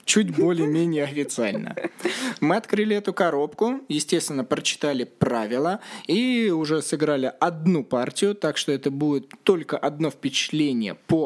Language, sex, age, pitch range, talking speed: Russian, male, 20-39, 135-170 Hz, 125 wpm